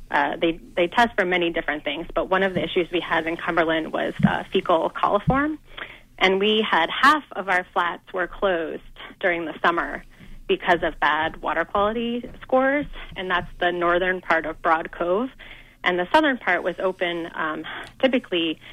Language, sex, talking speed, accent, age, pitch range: English, female, 175 wpm, American, 30-49, 170-200 Hz